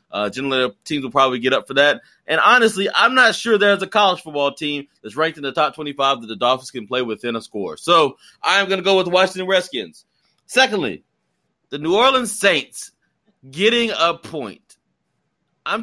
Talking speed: 195 wpm